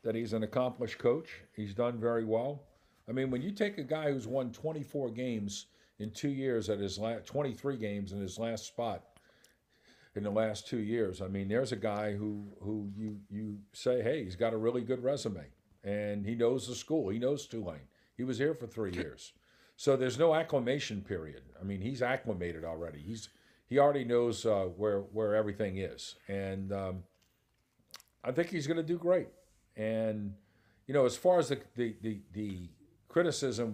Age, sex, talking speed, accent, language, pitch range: 50-69, male, 190 wpm, American, English, 100-125 Hz